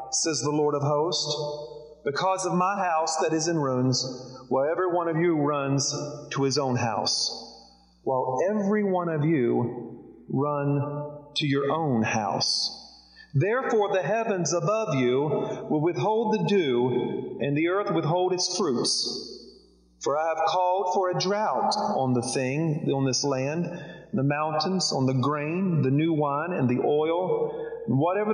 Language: English